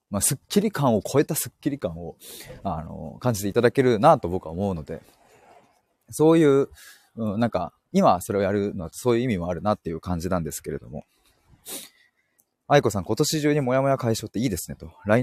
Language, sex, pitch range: Japanese, male, 100-150 Hz